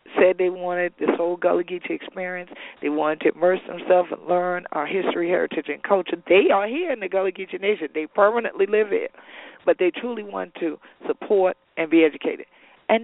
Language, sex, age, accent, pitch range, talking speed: English, female, 50-69, American, 160-220 Hz, 195 wpm